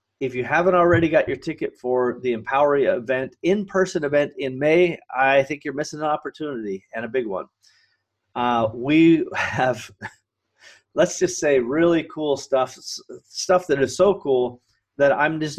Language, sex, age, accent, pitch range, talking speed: English, male, 30-49, American, 125-170 Hz, 160 wpm